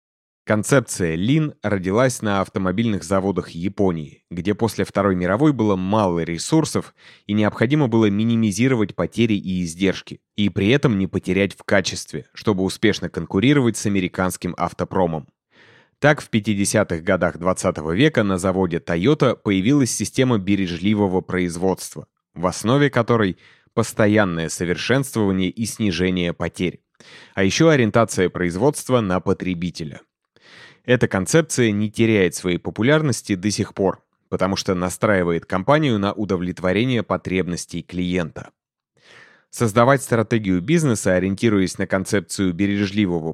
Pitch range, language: 90-115 Hz, Russian